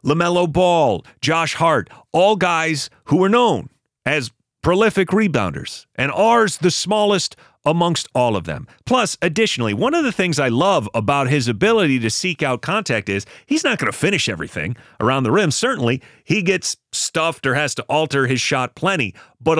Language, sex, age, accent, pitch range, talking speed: English, male, 30-49, American, 115-165 Hz, 175 wpm